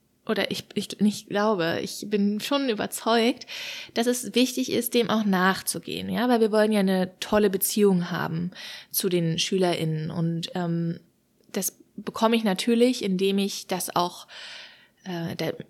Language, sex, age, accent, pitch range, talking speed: German, female, 20-39, German, 180-225 Hz, 150 wpm